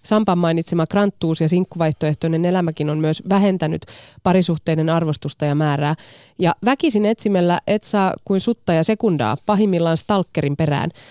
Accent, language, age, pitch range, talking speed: native, Finnish, 30-49, 150-200 Hz, 135 wpm